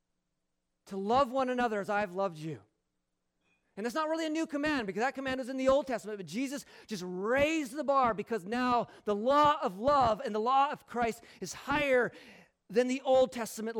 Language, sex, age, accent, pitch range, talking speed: English, male, 40-59, American, 175-235 Hz, 205 wpm